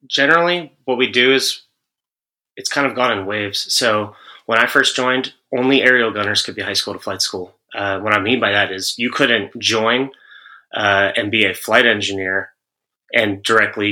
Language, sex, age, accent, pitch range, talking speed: English, male, 30-49, American, 100-120 Hz, 190 wpm